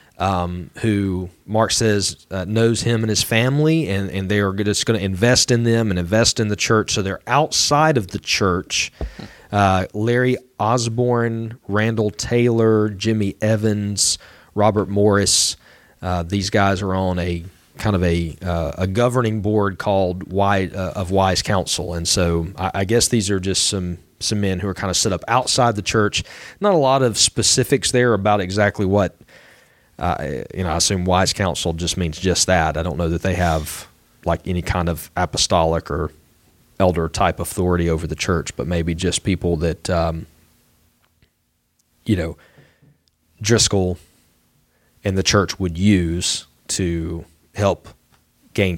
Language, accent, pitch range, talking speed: English, American, 85-110 Hz, 165 wpm